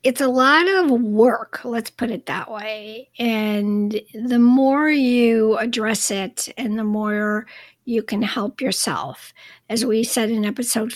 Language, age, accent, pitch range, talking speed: English, 50-69, American, 210-250 Hz, 155 wpm